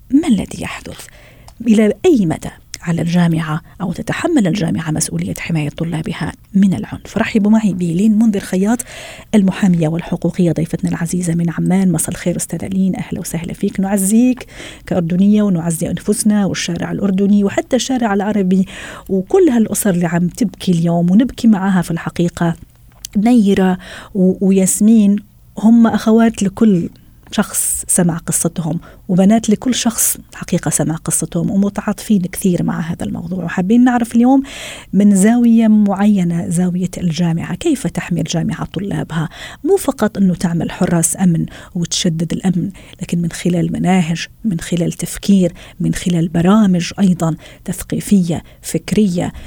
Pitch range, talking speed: 170-210 Hz, 125 wpm